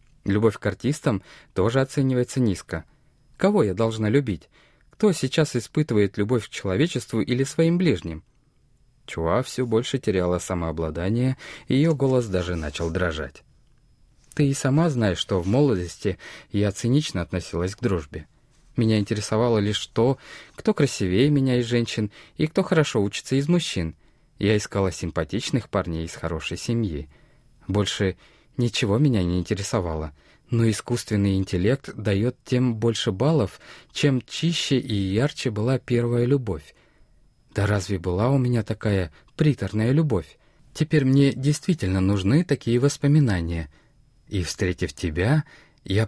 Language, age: Russian, 20-39